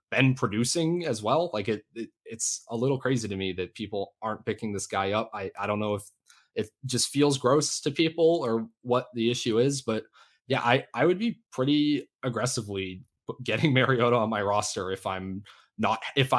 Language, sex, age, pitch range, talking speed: English, male, 20-39, 110-150 Hz, 195 wpm